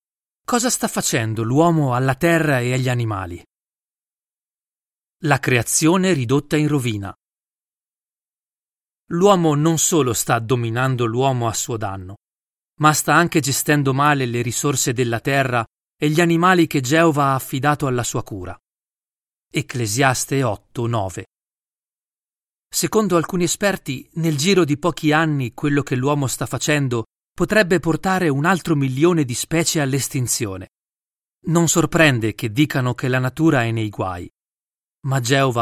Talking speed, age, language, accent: 130 wpm, 40-59, Italian, native